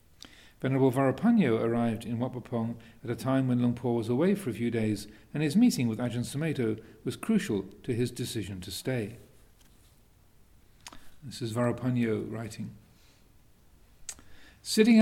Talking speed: 140 wpm